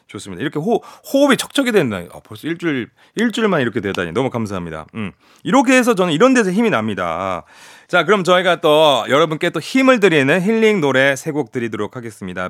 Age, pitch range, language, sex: 30-49, 125-210 Hz, Korean, male